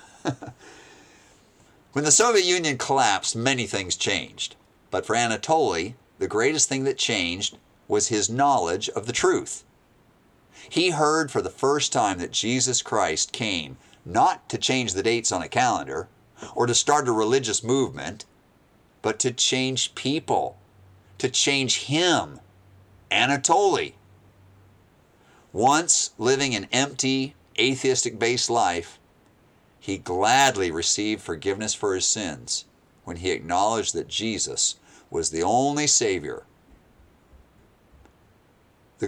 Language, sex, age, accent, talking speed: English, male, 50-69, American, 120 wpm